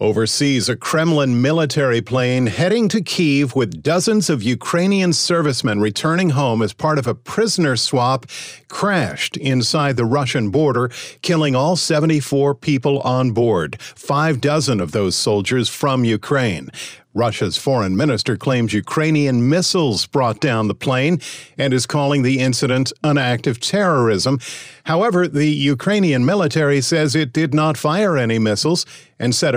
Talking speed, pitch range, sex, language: 145 wpm, 125-155 Hz, male, English